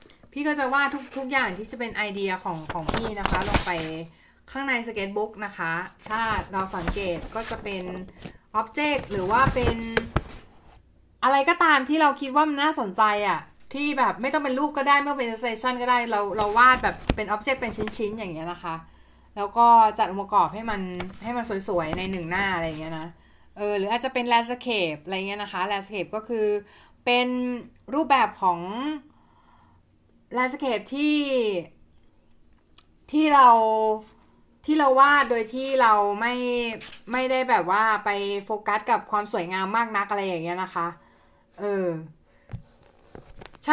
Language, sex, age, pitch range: Thai, female, 20-39, 190-245 Hz